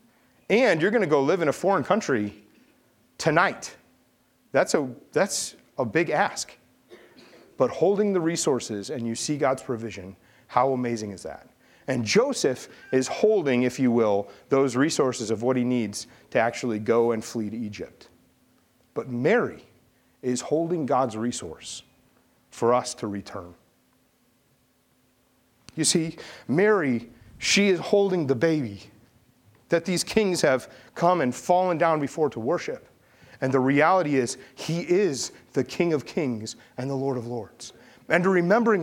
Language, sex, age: English, male, 40-59